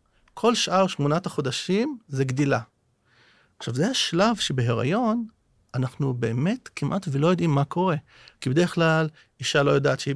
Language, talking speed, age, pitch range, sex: Hebrew, 140 wpm, 40-59, 120-155 Hz, male